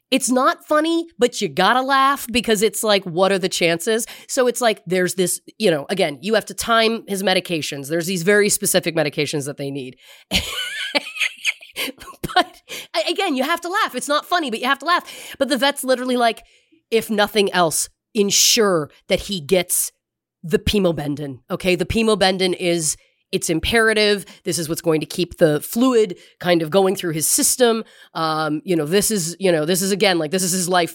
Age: 30-49